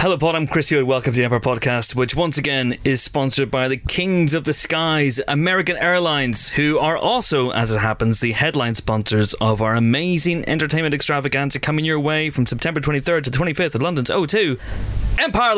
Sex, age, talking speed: male, 20-39, 195 wpm